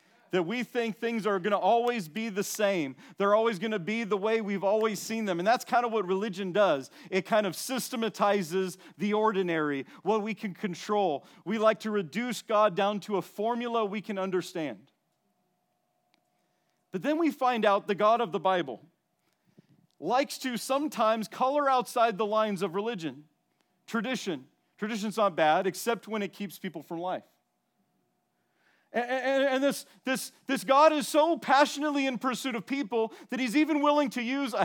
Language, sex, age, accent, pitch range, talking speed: English, male, 40-59, American, 195-250 Hz, 175 wpm